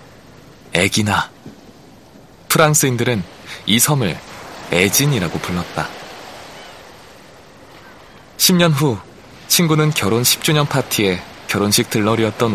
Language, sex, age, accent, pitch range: Korean, male, 20-39, native, 95-135 Hz